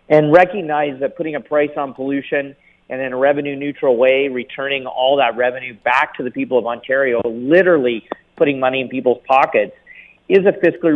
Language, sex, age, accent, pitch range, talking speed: English, male, 40-59, American, 135-175 Hz, 175 wpm